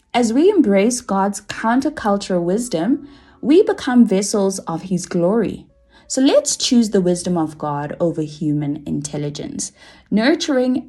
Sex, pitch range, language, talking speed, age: female, 170-255 Hz, English, 125 wpm, 20-39